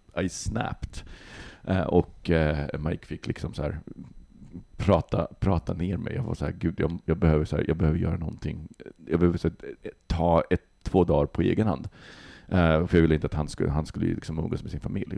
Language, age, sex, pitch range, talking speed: Swedish, 40-59, male, 80-100 Hz, 210 wpm